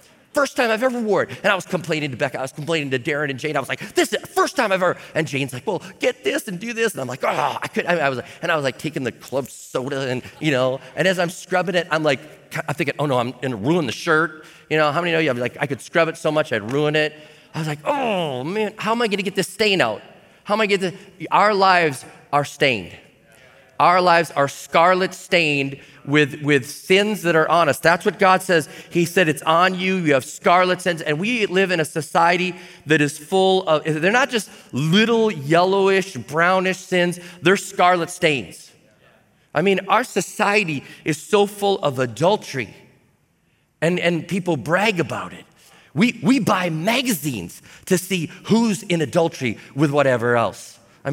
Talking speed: 225 wpm